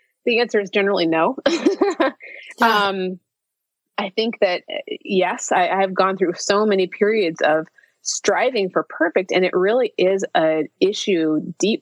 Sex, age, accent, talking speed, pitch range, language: female, 30-49, American, 140 wpm, 180-250 Hz, English